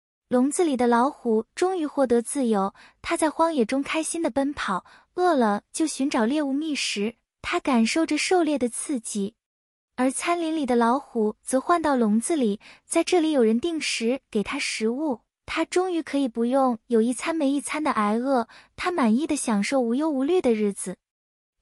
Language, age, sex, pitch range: Chinese, 20-39, female, 240-320 Hz